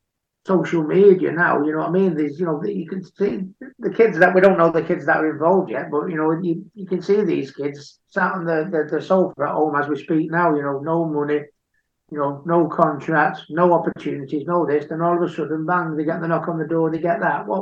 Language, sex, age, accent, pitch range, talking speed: English, male, 60-79, British, 150-185 Hz, 260 wpm